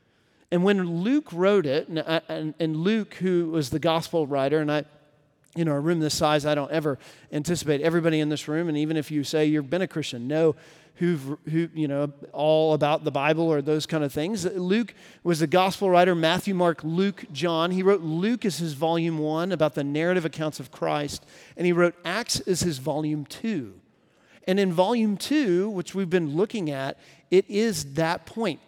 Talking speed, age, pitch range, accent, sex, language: 195 wpm, 40-59, 150-190 Hz, American, male, English